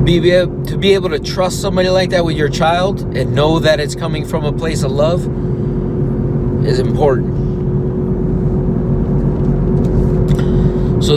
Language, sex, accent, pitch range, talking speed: English, male, American, 140-165 Hz, 130 wpm